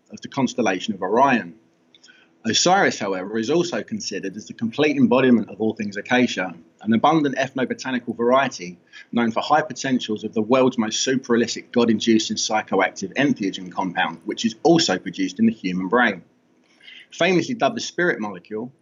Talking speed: 155 wpm